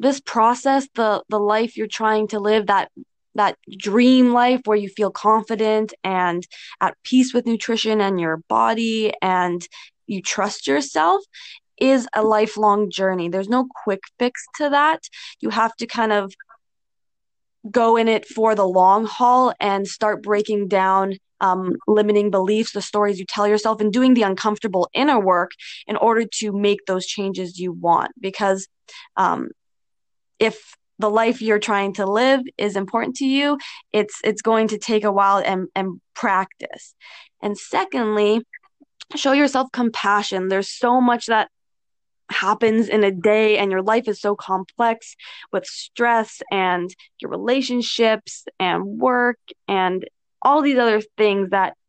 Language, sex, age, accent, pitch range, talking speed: English, female, 20-39, American, 195-235 Hz, 155 wpm